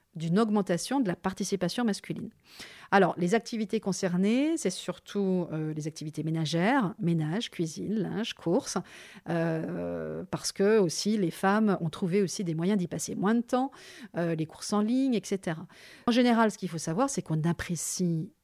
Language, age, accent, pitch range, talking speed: French, 40-59, French, 170-225 Hz, 165 wpm